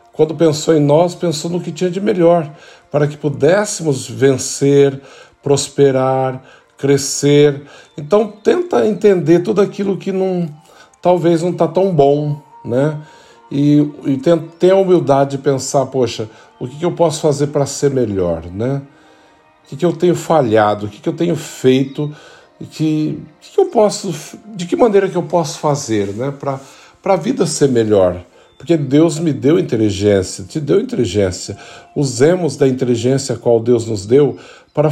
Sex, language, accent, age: male, Portuguese, Brazilian, 50-69